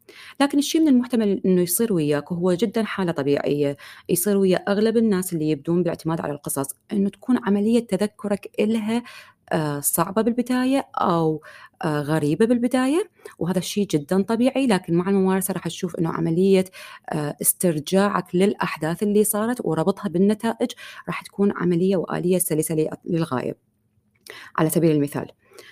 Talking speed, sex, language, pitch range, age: 130 wpm, female, Arabic, 155-210 Hz, 30-49